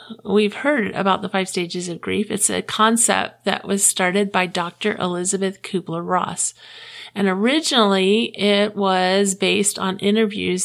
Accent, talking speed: American, 145 wpm